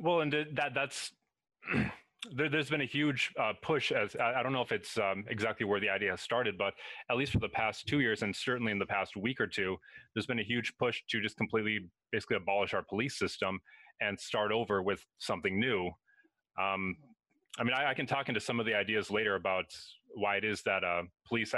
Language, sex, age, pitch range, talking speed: English, male, 30-49, 95-135 Hz, 220 wpm